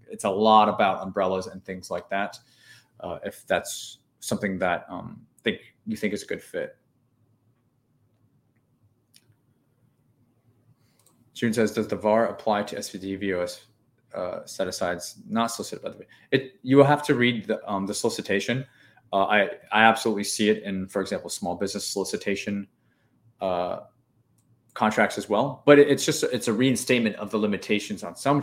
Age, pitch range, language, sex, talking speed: 20-39, 105-125 Hz, English, male, 160 wpm